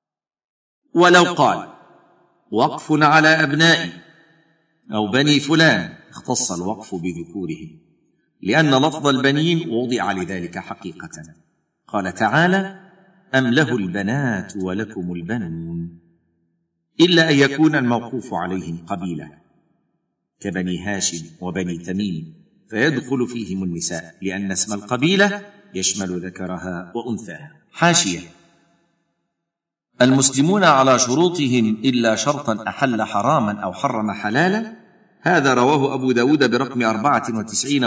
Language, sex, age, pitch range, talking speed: Arabic, male, 50-69, 105-155 Hz, 95 wpm